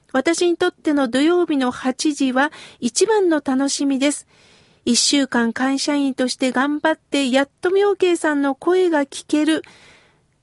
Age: 50-69